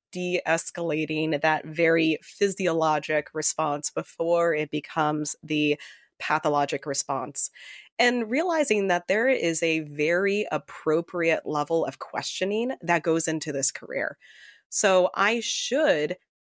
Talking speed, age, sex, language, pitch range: 110 wpm, 20-39, female, English, 150-175 Hz